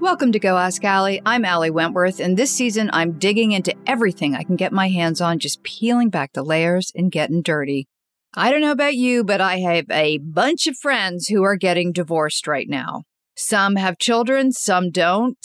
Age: 50-69